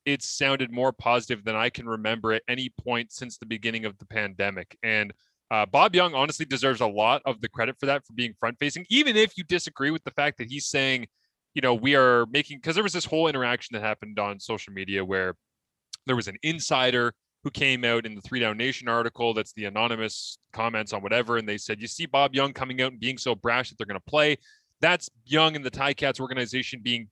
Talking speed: 230 wpm